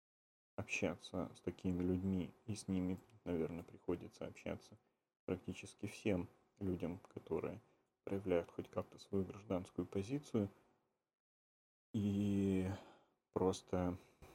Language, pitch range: Russian, 85-100 Hz